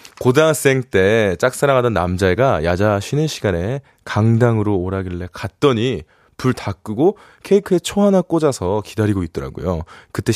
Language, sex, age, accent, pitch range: Korean, male, 20-39, native, 105-155 Hz